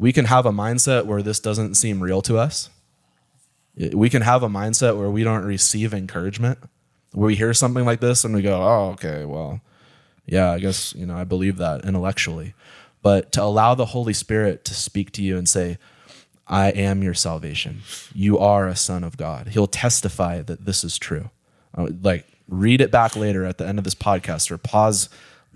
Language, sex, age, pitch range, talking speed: English, male, 20-39, 90-110 Hz, 200 wpm